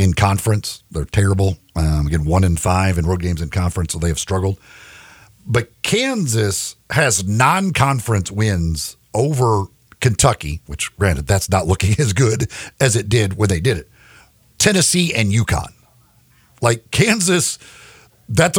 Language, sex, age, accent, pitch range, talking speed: English, male, 50-69, American, 95-125 Hz, 145 wpm